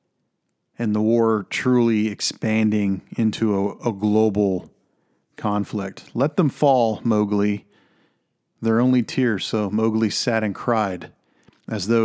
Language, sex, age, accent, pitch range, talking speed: English, male, 40-59, American, 105-120 Hz, 120 wpm